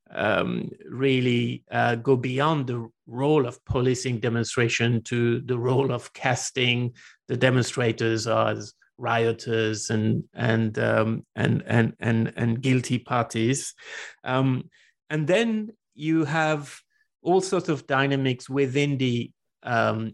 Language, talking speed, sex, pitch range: English, 120 wpm, male, 115-135 Hz